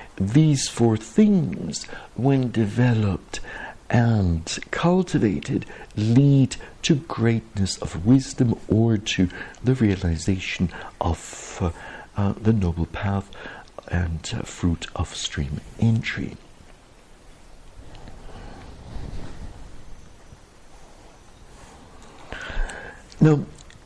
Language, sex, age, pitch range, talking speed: English, male, 60-79, 95-145 Hz, 75 wpm